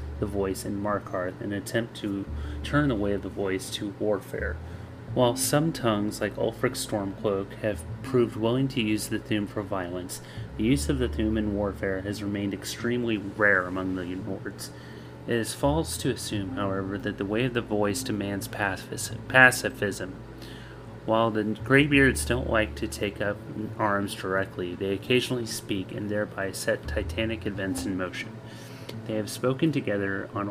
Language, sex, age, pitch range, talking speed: English, male, 30-49, 100-115 Hz, 165 wpm